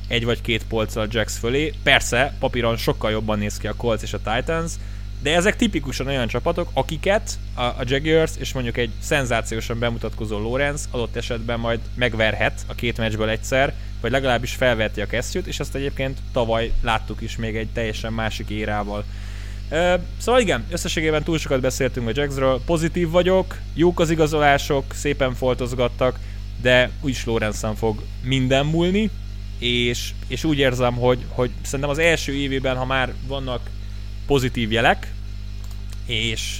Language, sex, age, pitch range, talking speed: Hungarian, male, 20-39, 105-130 Hz, 150 wpm